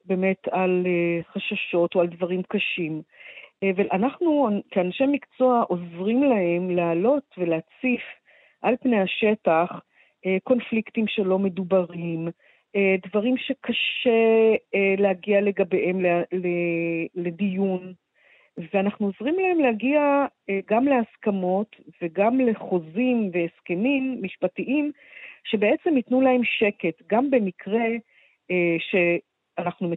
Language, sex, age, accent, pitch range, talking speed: Hebrew, female, 40-59, native, 180-235 Hz, 90 wpm